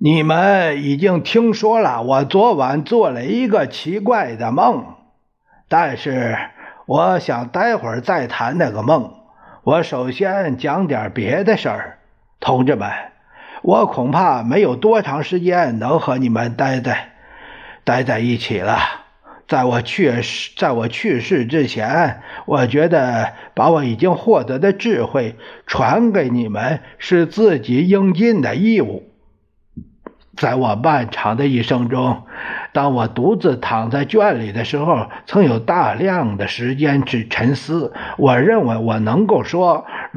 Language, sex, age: Chinese, male, 50-69